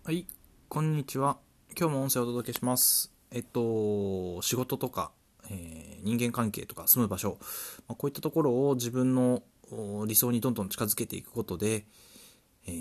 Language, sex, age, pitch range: Japanese, male, 20-39, 100-130 Hz